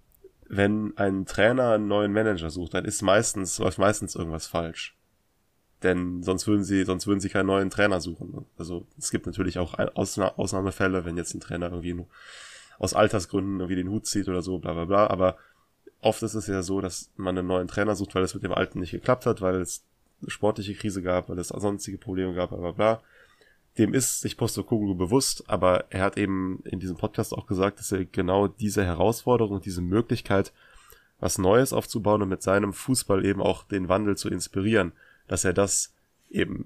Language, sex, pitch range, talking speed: German, male, 90-105 Hz, 195 wpm